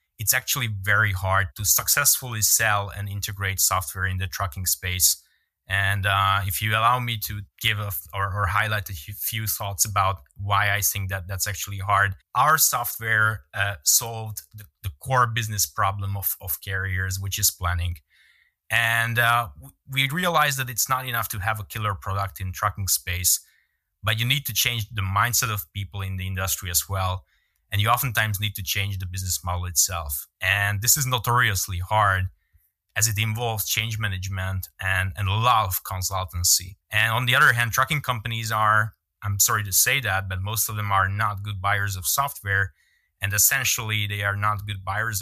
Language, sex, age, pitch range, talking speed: English, male, 20-39, 95-110 Hz, 180 wpm